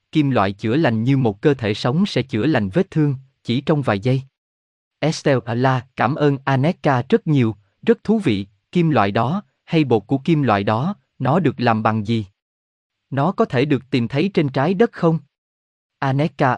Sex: male